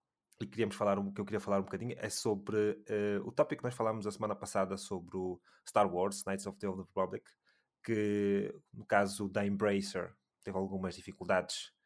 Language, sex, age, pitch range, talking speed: Portuguese, male, 20-39, 95-110 Hz, 185 wpm